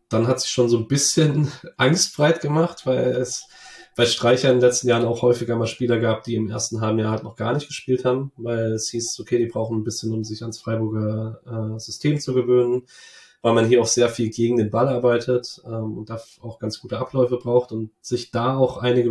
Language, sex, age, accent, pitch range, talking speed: German, male, 20-39, German, 115-125 Hz, 225 wpm